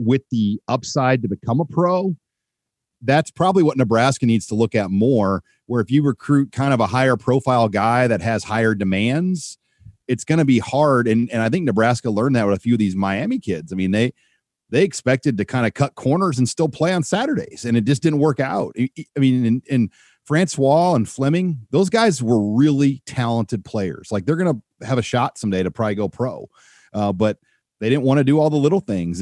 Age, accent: 40-59, American